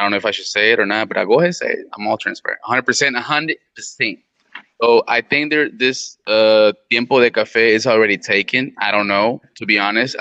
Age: 20-39